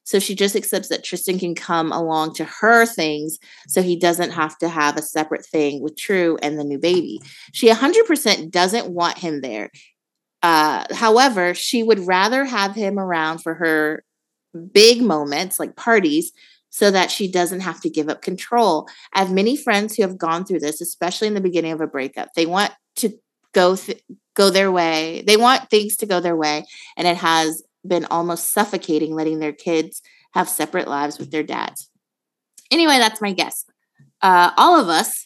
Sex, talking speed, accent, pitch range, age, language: female, 190 wpm, American, 160-205 Hz, 30-49, English